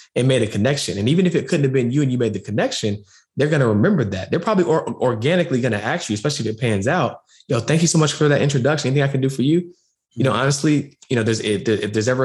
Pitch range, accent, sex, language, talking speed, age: 110-140 Hz, American, male, English, 280 wpm, 20-39